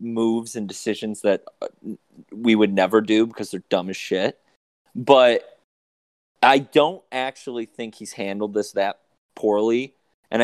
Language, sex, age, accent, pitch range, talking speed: English, male, 30-49, American, 100-135 Hz, 140 wpm